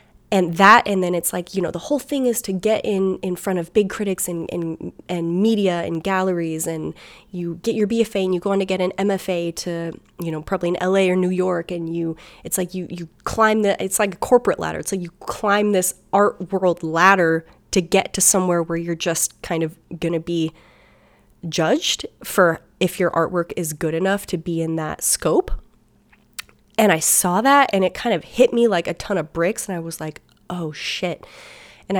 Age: 20-39